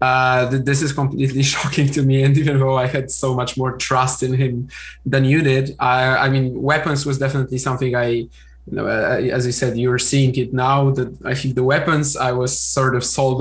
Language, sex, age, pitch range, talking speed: English, male, 20-39, 125-140 Hz, 225 wpm